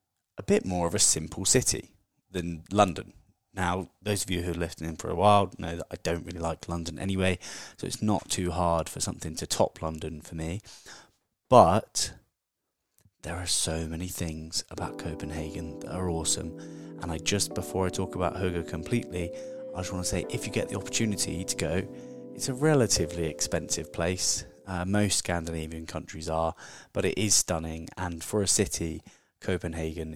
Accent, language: British, English